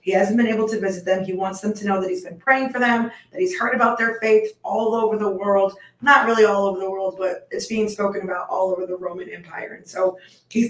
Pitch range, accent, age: 185-215 Hz, American, 20-39